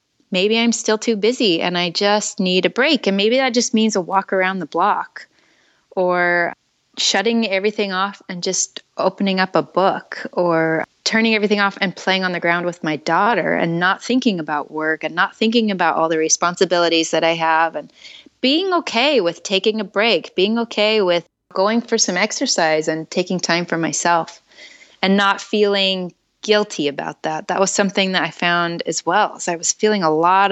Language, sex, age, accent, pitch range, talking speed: English, female, 20-39, American, 170-210 Hz, 190 wpm